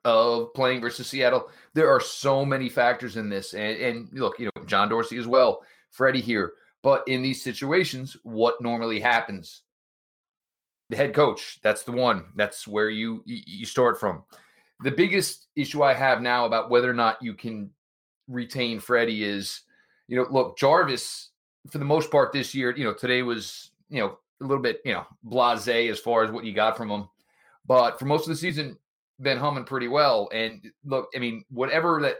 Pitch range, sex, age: 120-155 Hz, male, 30-49